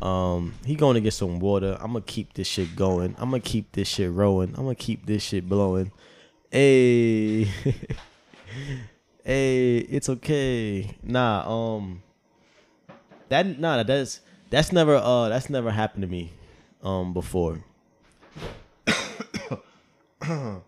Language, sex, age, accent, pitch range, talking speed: English, male, 20-39, American, 90-125 Hz, 115 wpm